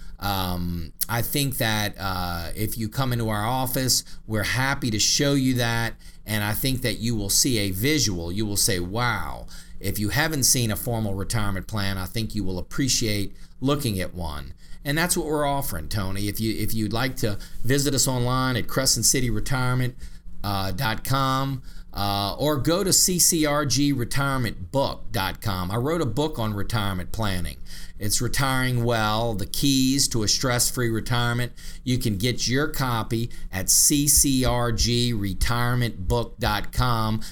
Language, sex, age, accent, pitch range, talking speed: English, male, 40-59, American, 100-125 Hz, 150 wpm